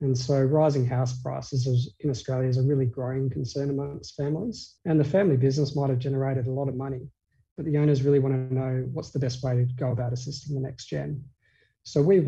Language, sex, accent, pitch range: English, male, Australian, 130-145 Hz